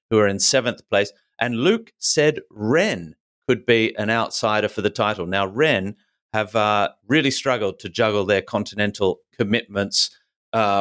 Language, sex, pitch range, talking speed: English, male, 100-130 Hz, 155 wpm